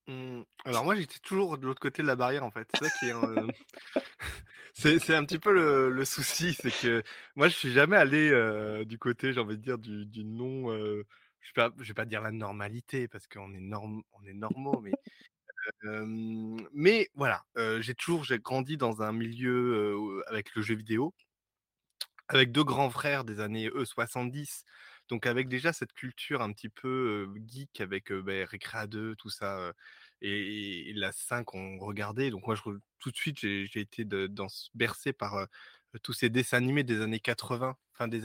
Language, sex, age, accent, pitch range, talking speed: French, male, 20-39, French, 105-135 Hz, 200 wpm